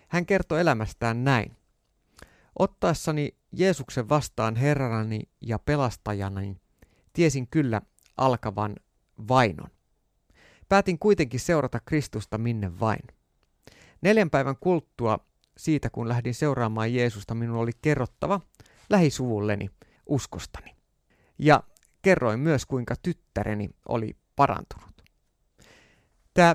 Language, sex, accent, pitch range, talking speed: Finnish, male, native, 115-160 Hz, 95 wpm